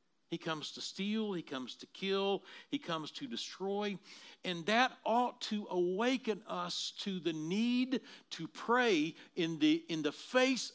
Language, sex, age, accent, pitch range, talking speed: English, male, 60-79, American, 170-230 Hz, 150 wpm